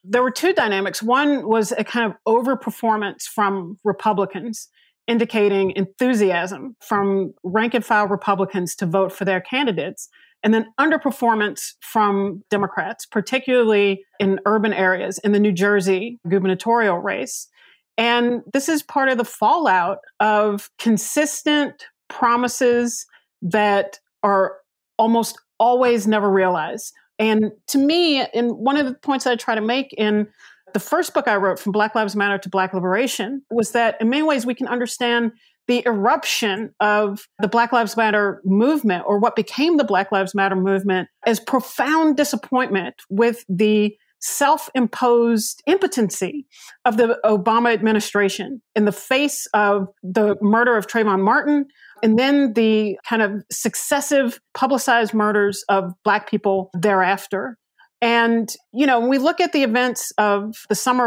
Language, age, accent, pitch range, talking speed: English, 40-59, American, 205-250 Hz, 145 wpm